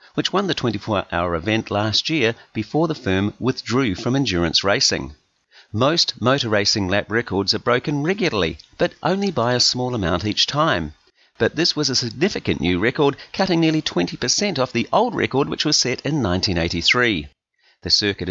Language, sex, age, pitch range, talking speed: English, male, 40-59, 100-145 Hz, 165 wpm